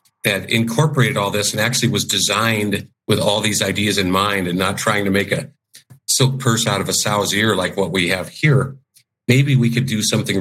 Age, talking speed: 50-69, 215 wpm